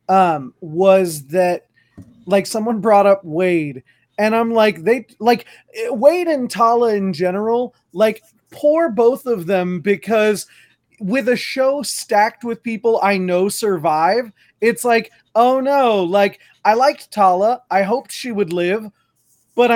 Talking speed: 145 wpm